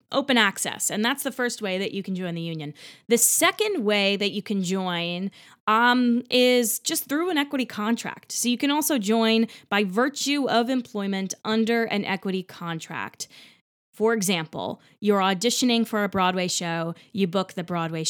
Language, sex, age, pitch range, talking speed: English, female, 20-39, 175-225 Hz, 170 wpm